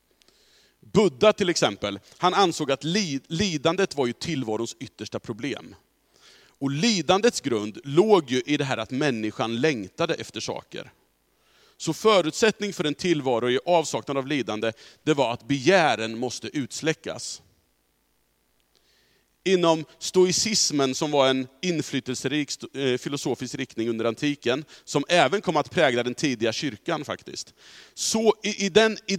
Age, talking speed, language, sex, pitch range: 40-59, 130 wpm, Swedish, male, 110-170 Hz